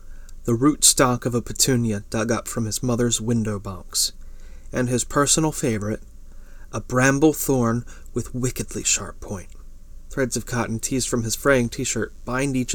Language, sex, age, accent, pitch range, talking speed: English, male, 30-49, American, 95-125 Hz, 160 wpm